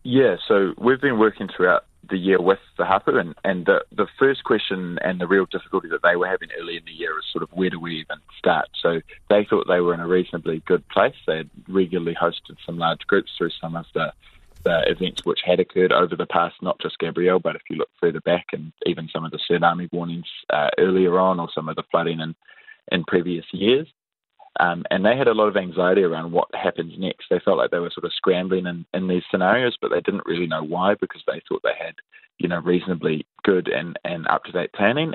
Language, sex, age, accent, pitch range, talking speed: English, male, 20-39, Australian, 85-95 Hz, 230 wpm